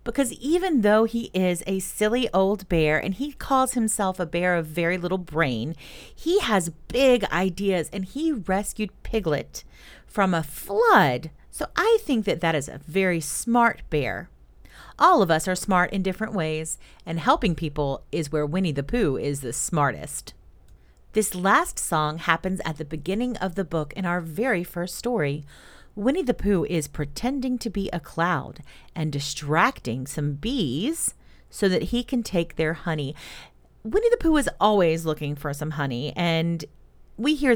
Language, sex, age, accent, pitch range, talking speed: English, female, 40-59, American, 150-215 Hz, 170 wpm